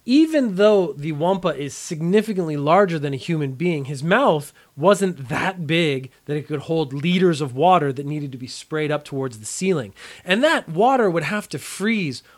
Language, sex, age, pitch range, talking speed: English, male, 30-49, 140-190 Hz, 190 wpm